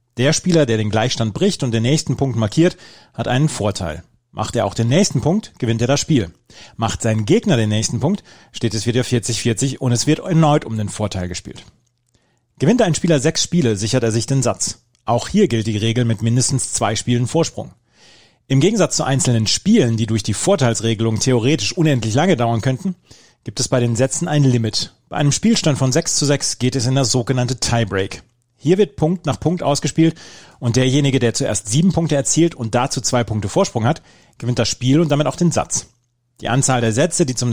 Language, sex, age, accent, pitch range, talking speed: German, male, 30-49, German, 115-150 Hz, 205 wpm